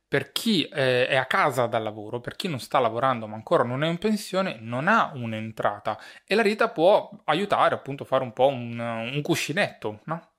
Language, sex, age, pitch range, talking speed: Italian, male, 20-39, 115-150 Hz, 200 wpm